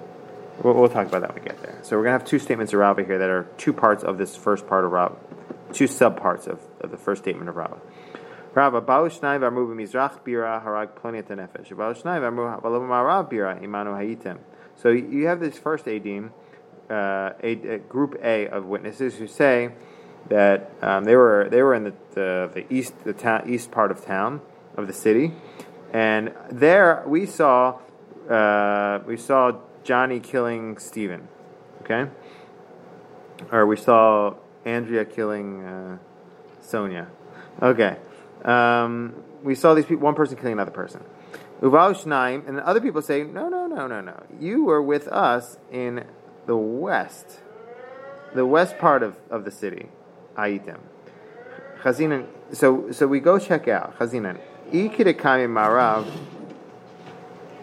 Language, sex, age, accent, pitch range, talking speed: English, male, 30-49, American, 105-135 Hz, 145 wpm